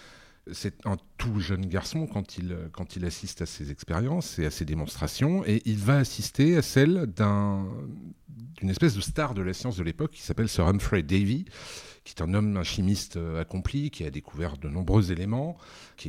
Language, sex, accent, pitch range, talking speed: French, male, French, 95-135 Hz, 185 wpm